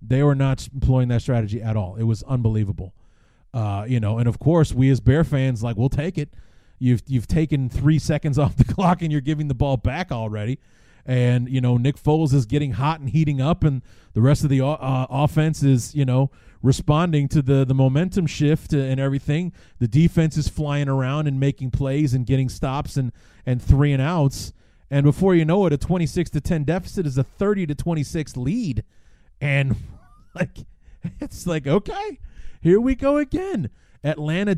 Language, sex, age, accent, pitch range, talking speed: English, male, 30-49, American, 120-155 Hz, 195 wpm